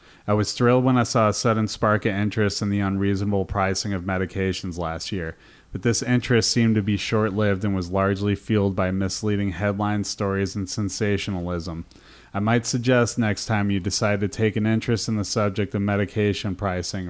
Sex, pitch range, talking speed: male, 95-110 Hz, 185 wpm